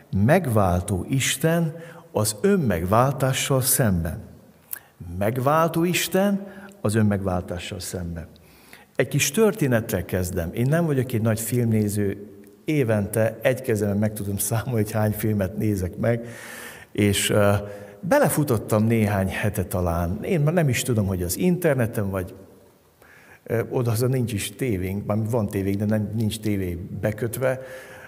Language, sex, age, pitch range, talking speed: Hungarian, male, 60-79, 100-130 Hz, 120 wpm